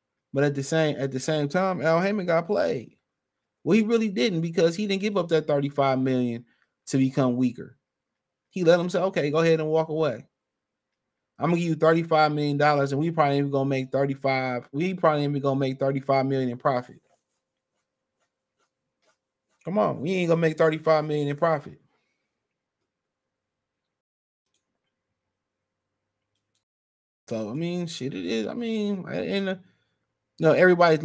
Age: 20-39